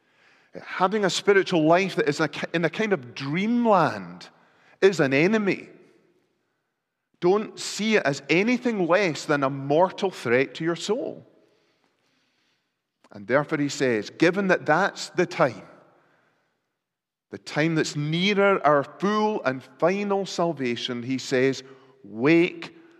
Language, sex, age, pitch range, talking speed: English, male, 40-59, 140-185 Hz, 125 wpm